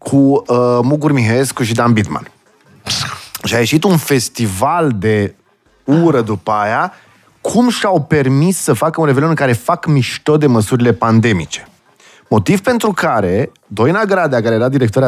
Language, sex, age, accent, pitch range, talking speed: Romanian, male, 20-39, native, 115-175 Hz, 150 wpm